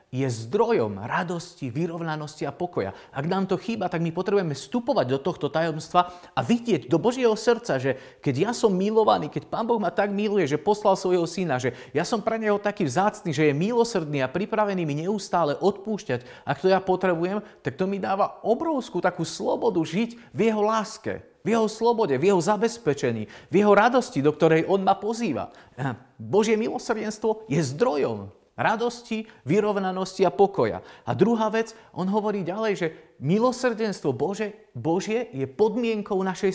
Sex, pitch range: male, 155-215 Hz